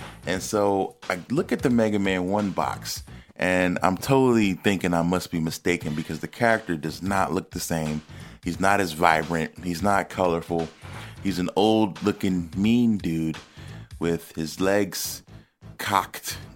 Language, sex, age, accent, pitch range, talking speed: English, male, 30-49, American, 80-105 Hz, 150 wpm